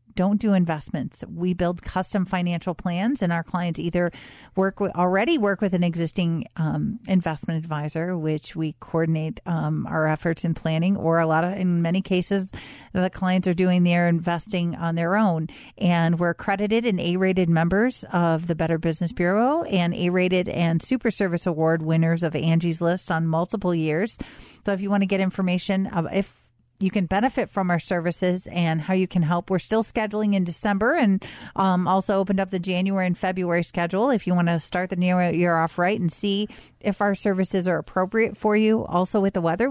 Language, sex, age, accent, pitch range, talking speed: English, female, 40-59, American, 170-200 Hz, 195 wpm